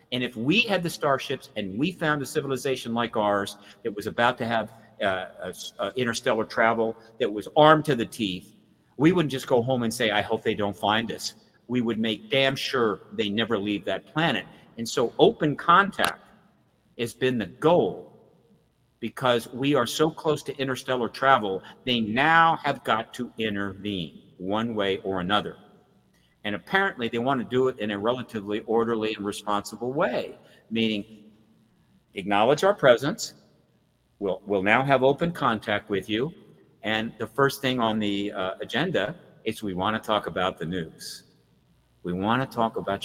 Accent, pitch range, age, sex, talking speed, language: American, 105-130 Hz, 50-69, male, 170 wpm, English